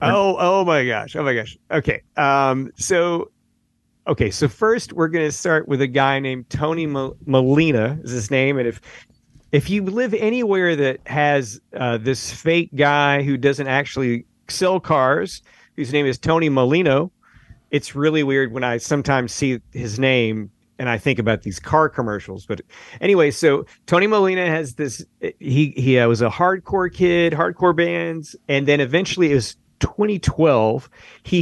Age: 50-69